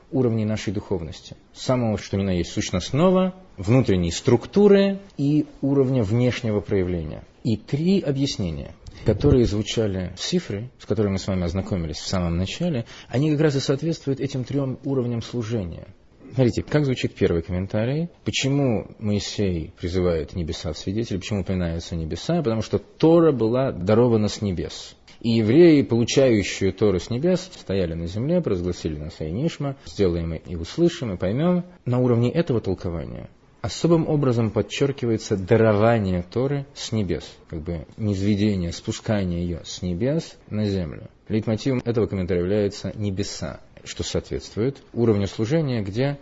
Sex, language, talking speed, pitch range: male, Russian, 140 wpm, 95-135 Hz